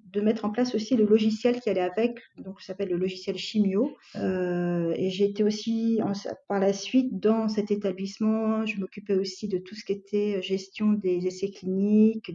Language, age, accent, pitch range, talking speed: French, 40-59, French, 190-220 Hz, 195 wpm